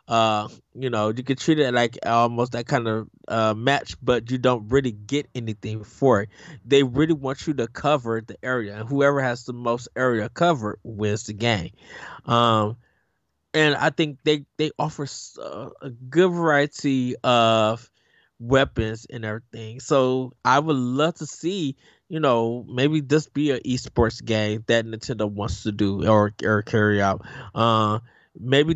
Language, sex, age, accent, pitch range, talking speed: English, male, 20-39, American, 110-145 Hz, 165 wpm